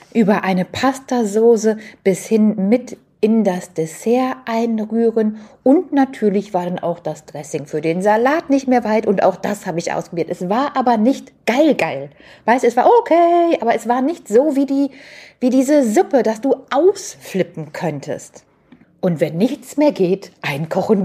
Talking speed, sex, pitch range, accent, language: 170 wpm, female, 165-240 Hz, German, German